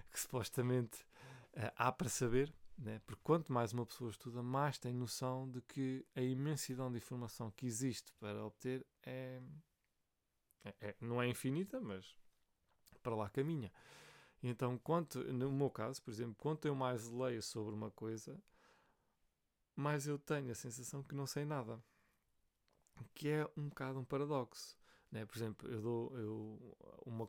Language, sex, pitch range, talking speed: Portuguese, male, 110-140 Hz, 160 wpm